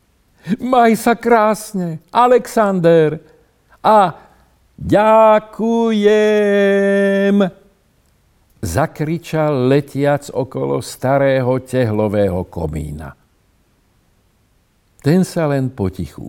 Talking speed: 60 wpm